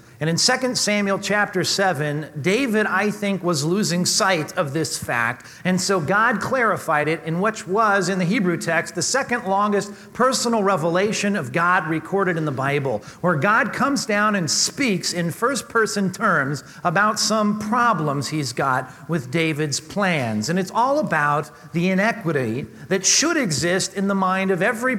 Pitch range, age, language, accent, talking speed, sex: 150-205 Hz, 40-59, English, American, 165 wpm, male